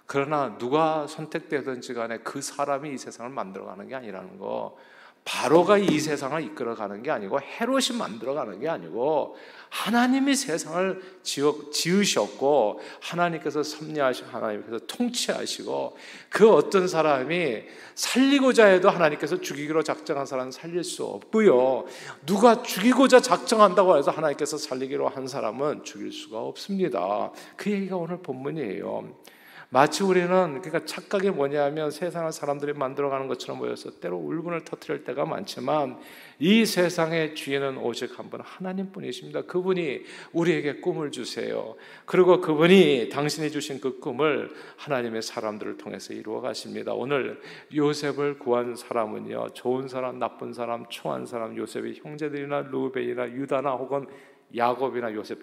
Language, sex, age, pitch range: Korean, male, 50-69, 125-180 Hz